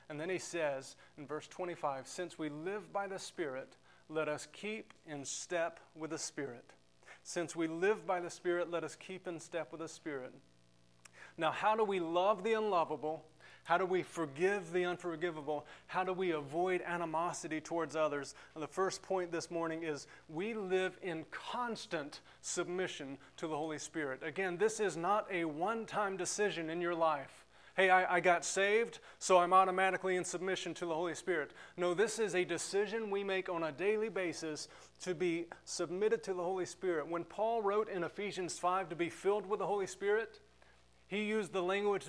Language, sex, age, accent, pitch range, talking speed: English, male, 30-49, American, 160-190 Hz, 185 wpm